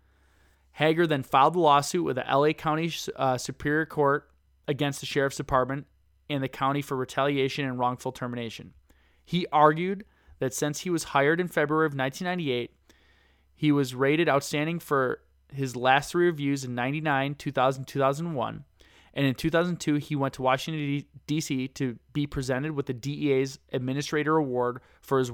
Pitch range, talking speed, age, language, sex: 125-150 Hz, 155 wpm, 20-39, English, male